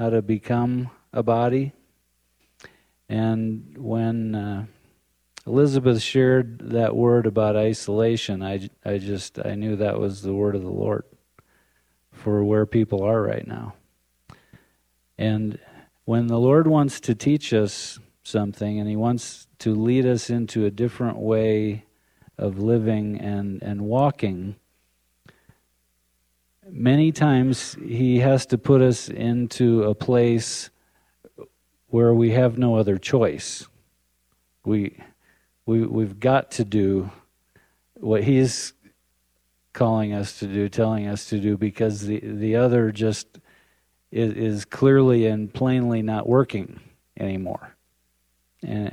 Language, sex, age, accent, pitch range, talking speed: English, male, 40-59, American, 95-120 Hz, 125 wpm